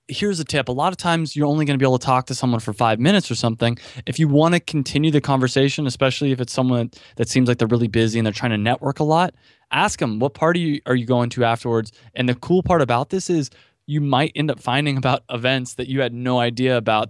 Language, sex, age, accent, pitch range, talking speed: English, male, 20-39, American, 120-140 Hz, 265 wpm